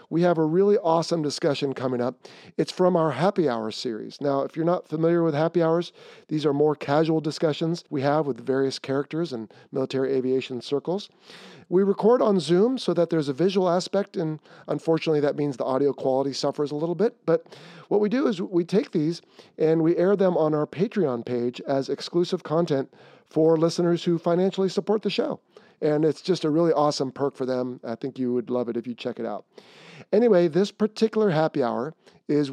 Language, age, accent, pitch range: English, 40-59, American, 135-180 Hz